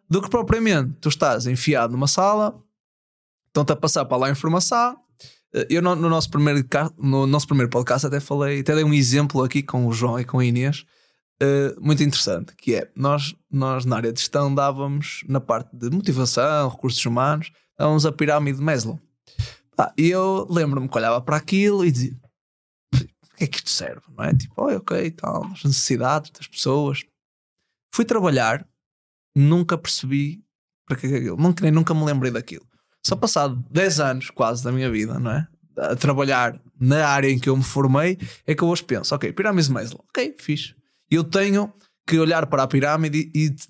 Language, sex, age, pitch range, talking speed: Portuguese, male, 20-39, 130-160 Hz, 180 wpm